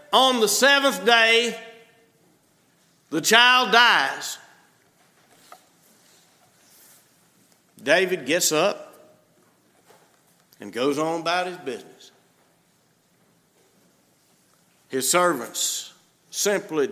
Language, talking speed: English, 65 wpm